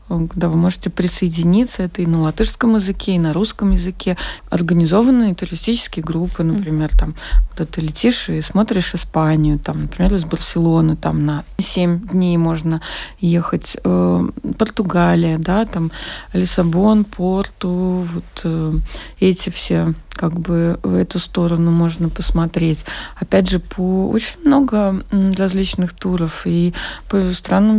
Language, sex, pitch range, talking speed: Russian, female, 170-205 Hz, 125 wpm